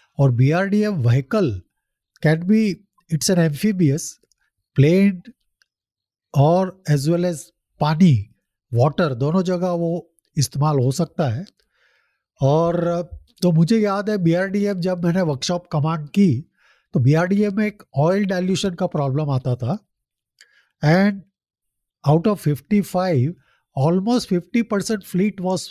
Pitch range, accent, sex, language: 140-190 Hz, native, male, Hindi